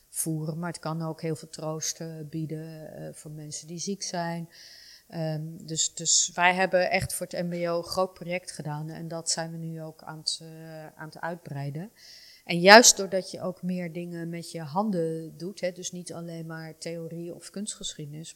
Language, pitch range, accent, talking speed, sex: Dutch, 155-180 Hz, Dutch, 195 wpm, female